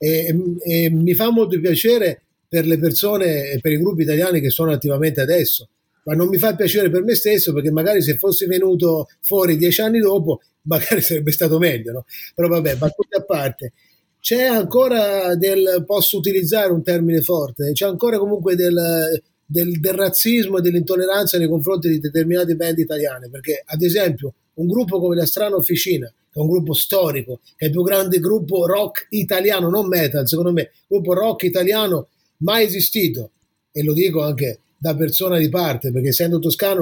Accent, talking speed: native, 180 wpm